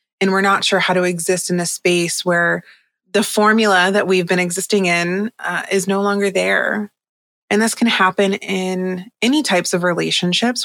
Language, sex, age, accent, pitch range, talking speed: English, female, 20-39, American, 185-215 Hz, 180 wpm